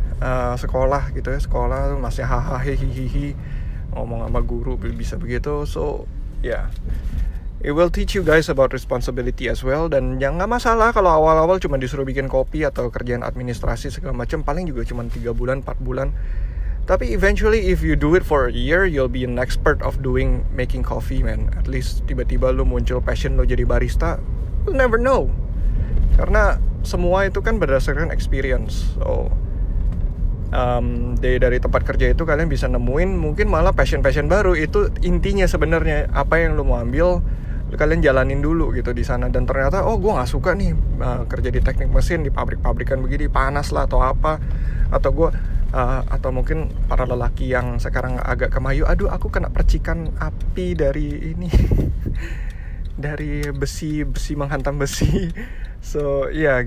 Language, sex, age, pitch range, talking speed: Indonesian, male, 20-39, 110-145 Hz, 165 wpm